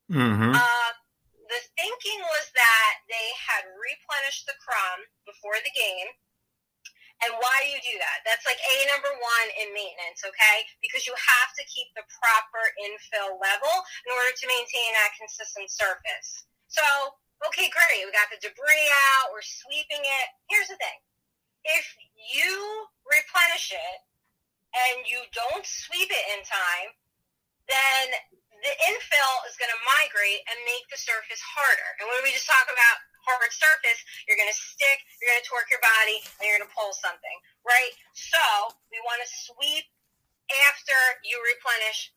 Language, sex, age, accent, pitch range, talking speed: English, female, 30-49, American, 225-295 Hz, 155 wpm